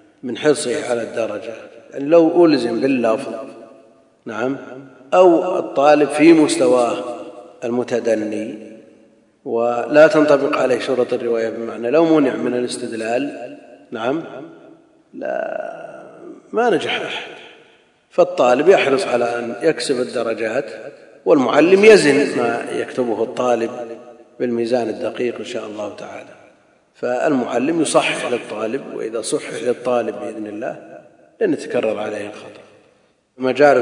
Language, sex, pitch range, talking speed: Arabic, male, 115-155 Hz, 105 wpm